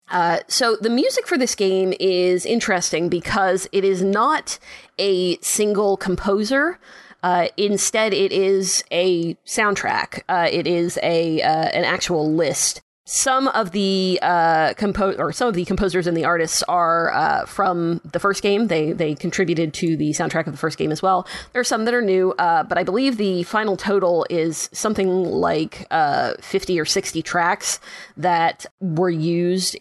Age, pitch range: 30-49, 170-205 Hz